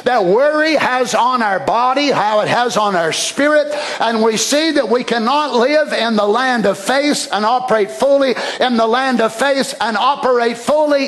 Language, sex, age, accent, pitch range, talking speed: English, male, 50-69, American, 225-290 Hz, 190 wpm